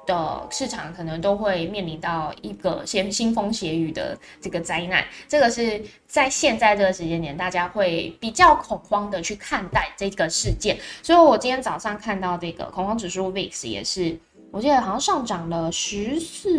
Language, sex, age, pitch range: Chinese, female, 10-29, 175-210 Hz